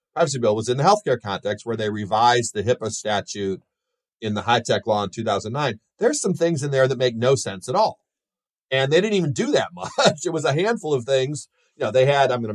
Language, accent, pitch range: English, American, 100-130 Hz